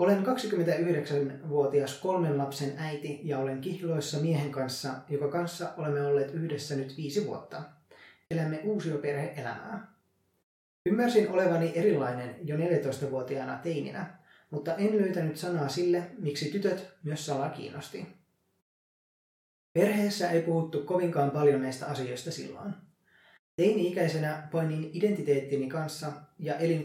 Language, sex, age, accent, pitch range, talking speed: Finnish, male, 20-39, native, 145-180 Hz, 110 wpm